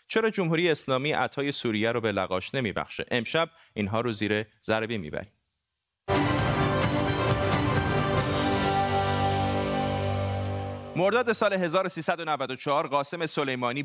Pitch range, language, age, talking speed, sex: 115-155 Hz, Persian, 30-49, 85 wpm, male